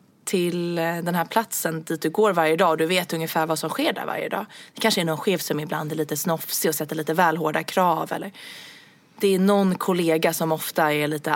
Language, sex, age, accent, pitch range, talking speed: Swedish, female, 20-39, native, 175-245 Hz, 225 wpm